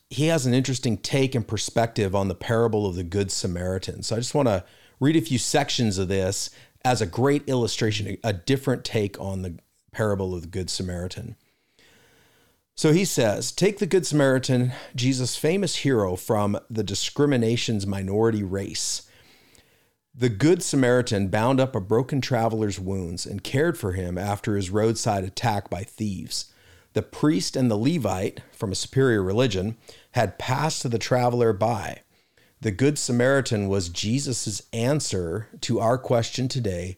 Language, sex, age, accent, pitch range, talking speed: English, male, 40-59, American, 100-125 Hz, 160 wpm